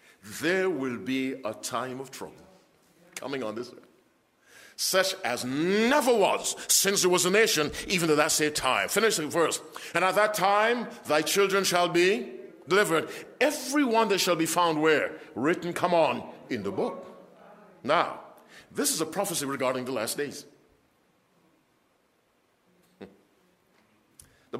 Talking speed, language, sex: 145 wpm, English, male